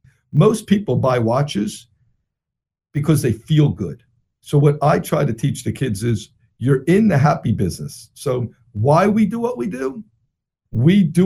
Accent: American